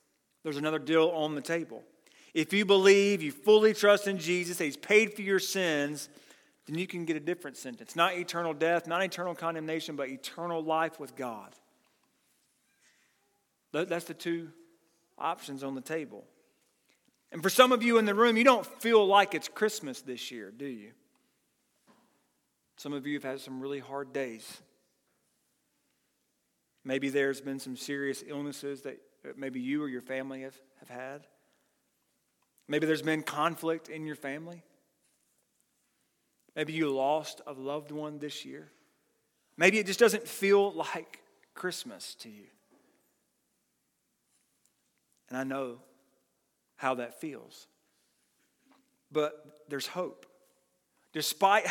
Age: 40-59